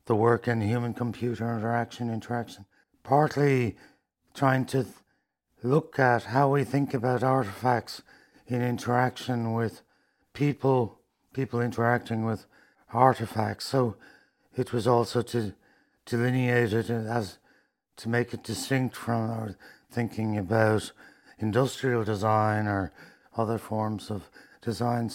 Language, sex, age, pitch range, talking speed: English, male, 60-79, 105-125 Hz, 115 wpm